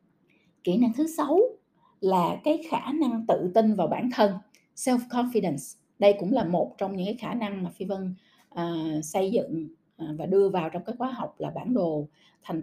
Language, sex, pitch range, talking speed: Vietnamese, female, 180-245 Hz, 185 wpm